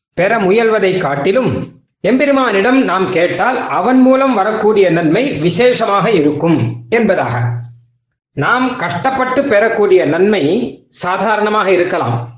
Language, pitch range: Tamil, 165-230 Hz